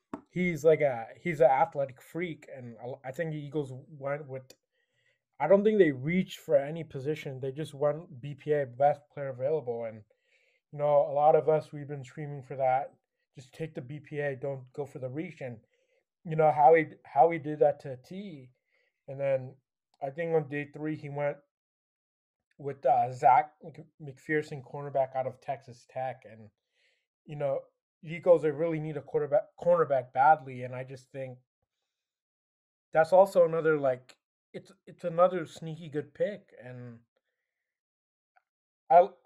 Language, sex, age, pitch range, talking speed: English, male, 20-39, 130-165 Hz, 160 wpm